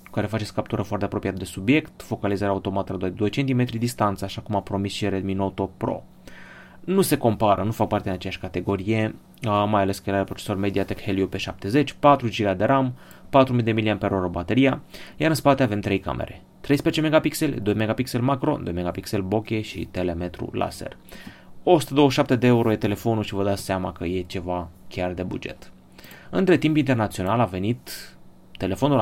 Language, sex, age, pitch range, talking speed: Romanian, male, 20-39, 100-125 Hz, 175 wpm